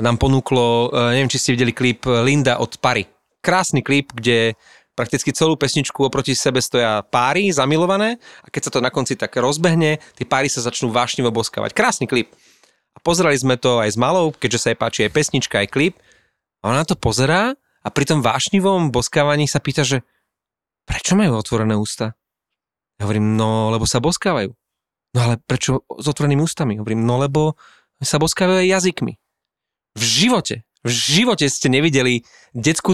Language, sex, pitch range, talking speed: Slovak, male, 125-165 Hz, 170 wpm